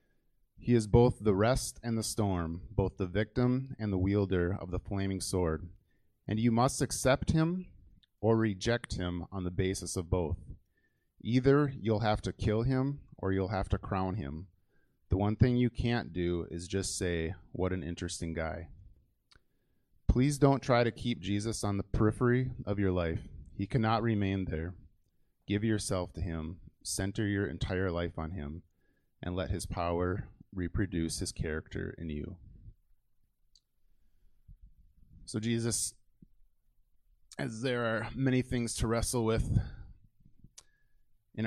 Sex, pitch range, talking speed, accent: male, 85-110 Hz, 150 wpm, American